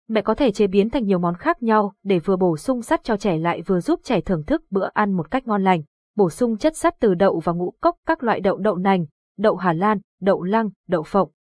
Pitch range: 185-245 Hz